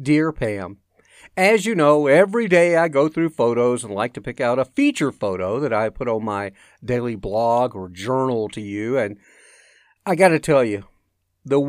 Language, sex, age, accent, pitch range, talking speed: English, male, 50-69, American, 125-185 Hz, 190 wpm